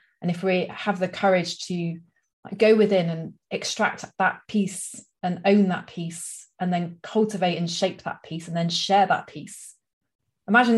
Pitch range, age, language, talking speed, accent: 170-200 Hz, 30-49, English, 165 wpm, British